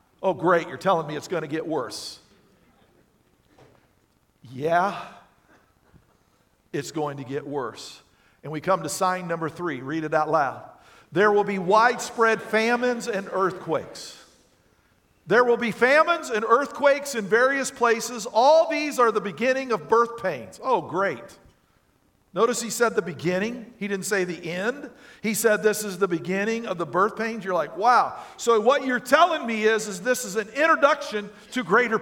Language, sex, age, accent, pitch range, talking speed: English, male, 50-69, American, 195-250 Hz, 165 wpm